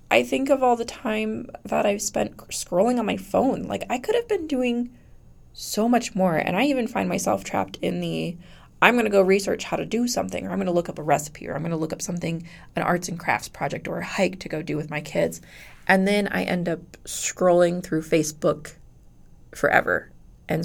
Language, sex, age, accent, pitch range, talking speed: English, female, 20-39, American, 160-210 Hz, 225 wpm